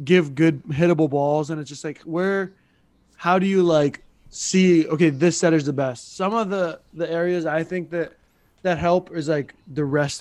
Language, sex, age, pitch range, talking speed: English, male, 20-39, 150-180 Hz, 200 wpm